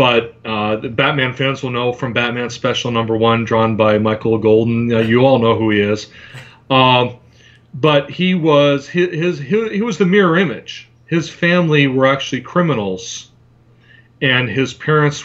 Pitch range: 115-135 Hz